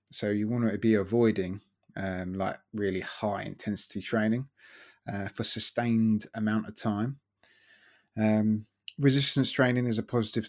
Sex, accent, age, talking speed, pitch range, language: male, British, 20-39, 135 wpm, 100-120 Hz, English